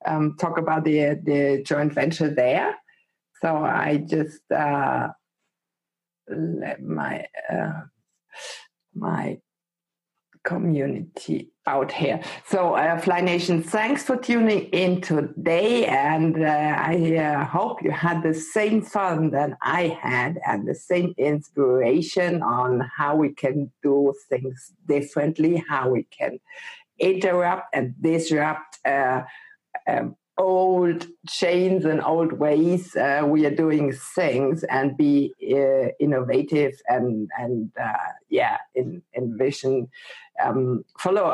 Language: English